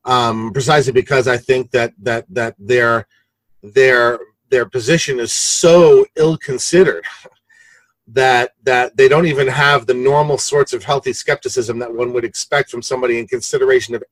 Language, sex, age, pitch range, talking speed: English, male, 40-59, 125-200 Hz, 155 wpm